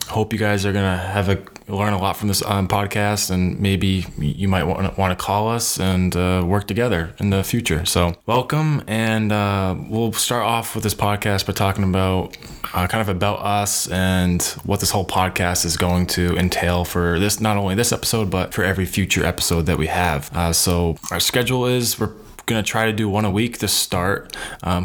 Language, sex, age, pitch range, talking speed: English, male, 20-39, 90-105 Hz, 210 wpm